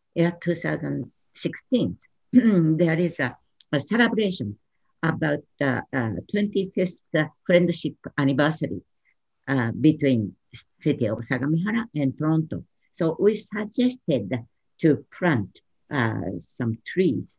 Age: 60-79